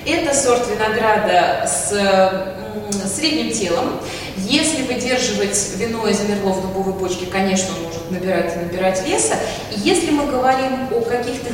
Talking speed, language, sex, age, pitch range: 135 wpm, Russian, female, 20-39, 190-260 Hz